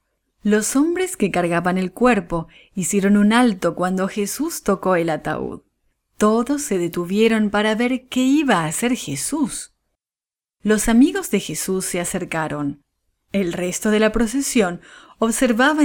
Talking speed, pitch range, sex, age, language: 135 wpm, 180-245 Hz, female, 30-49, English